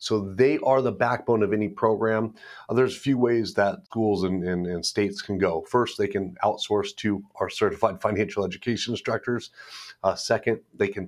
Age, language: 40-59, English